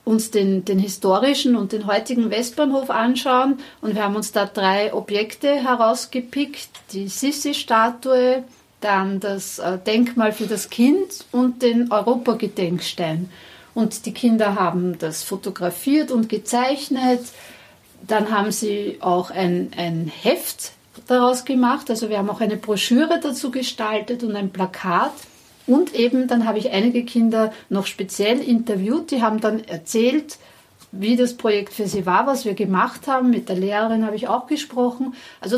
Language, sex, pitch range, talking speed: German, female, 205-250 Hz, 150 wpm